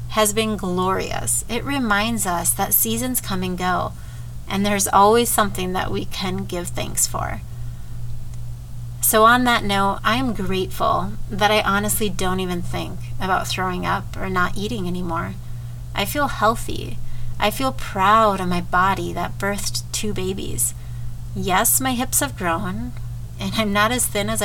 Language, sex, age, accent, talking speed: English, female, 30-49, American, 160 wpm